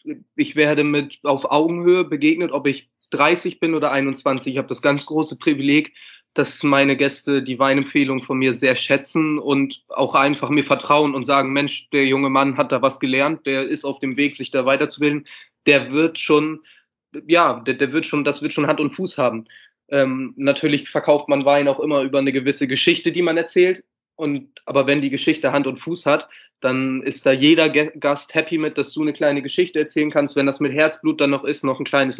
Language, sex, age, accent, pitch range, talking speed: German, male, 20-39, German, 135-150 Hz, 205 wpm